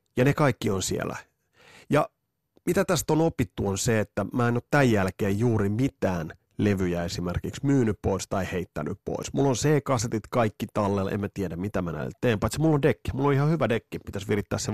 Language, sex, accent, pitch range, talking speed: Finnish, male, native, 90-120 Hz, 200 wpm